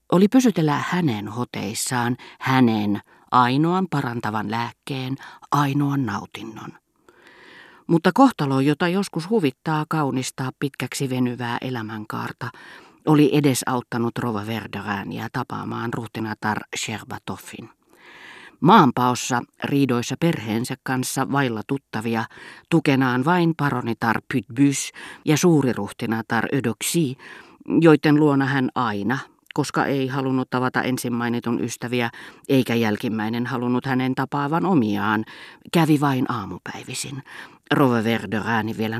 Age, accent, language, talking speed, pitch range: 40-59, native, Finnish, 95 wpm, 120-150 Hz